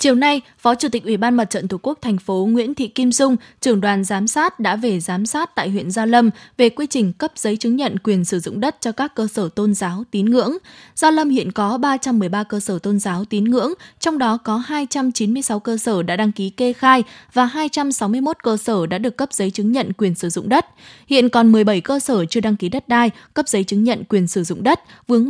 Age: 10-29